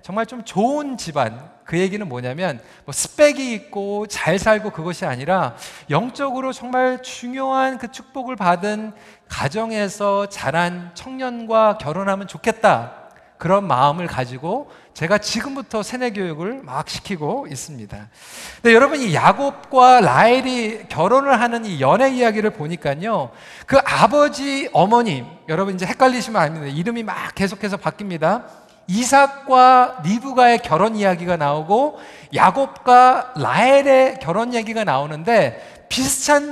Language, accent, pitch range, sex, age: Korean, native, 175-255 Hz, male, 40-59